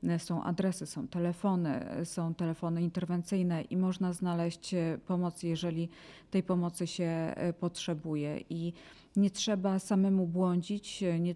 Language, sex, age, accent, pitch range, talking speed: Polish, female, 40-59, native, 160-180 Hz, 115 wpm